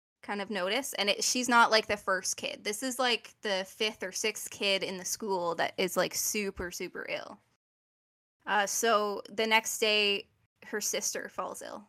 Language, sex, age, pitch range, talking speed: English, female, 10-29, 195-230 Hz, 185 wpm